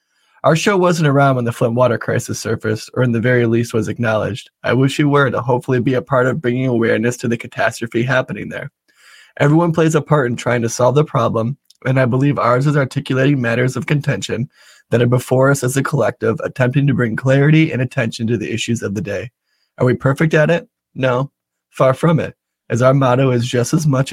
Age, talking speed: 20-39, 220 wpm